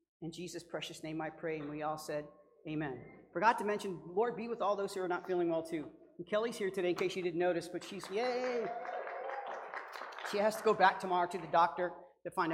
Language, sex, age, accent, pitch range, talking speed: English, male, 40-59, American, 170-225 Hz, 230 wpm